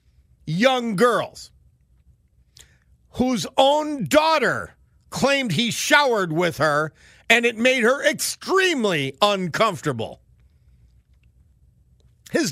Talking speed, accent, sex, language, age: 80 wpm, American, male, English, 50-69